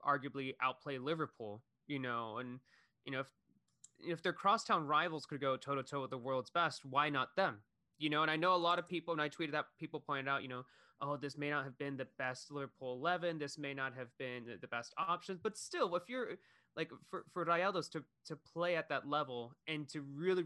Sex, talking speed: male, 225 wpm